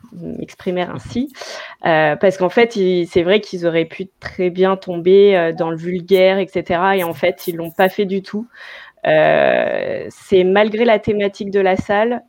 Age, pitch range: 20-39, 165-200 Hz